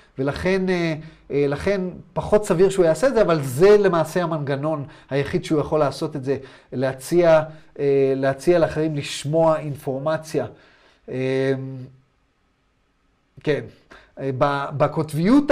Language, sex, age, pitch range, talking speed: Hebrew, male, 30-49, 145-210 Hz, 95 wpm